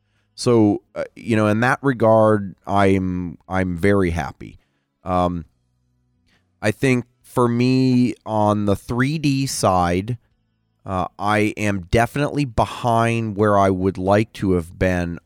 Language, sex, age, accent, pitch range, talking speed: English, male, 30-49, American, 95-120 Hz, 125 wpm